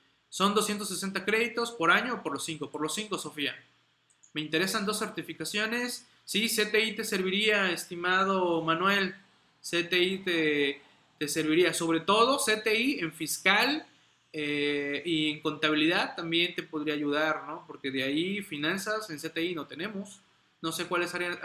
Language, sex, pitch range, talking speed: Spanish, male, 150-195 Hz, 150 wpm